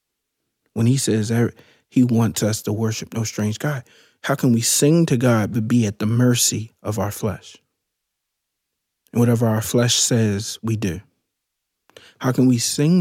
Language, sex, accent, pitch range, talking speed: English, male, American, 115-145 Hz, 165 wpm